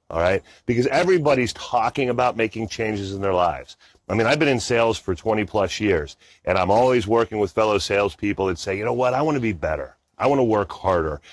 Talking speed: 230 wpm